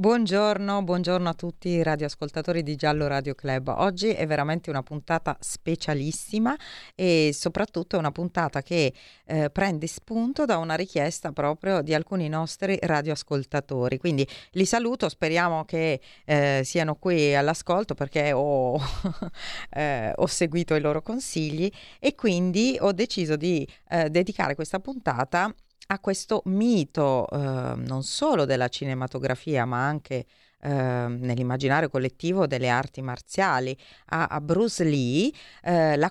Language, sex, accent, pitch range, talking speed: Italian, female, native, 130-180 Hz, 135 wpm